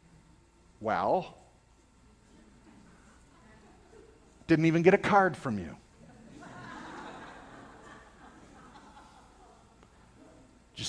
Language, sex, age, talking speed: English, male, 50-69, 55 wpm